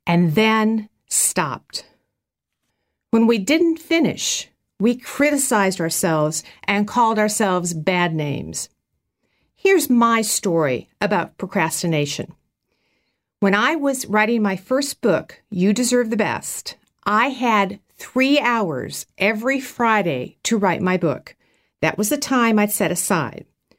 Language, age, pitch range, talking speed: English, 50-69, 190-260 Hz, 120 wpm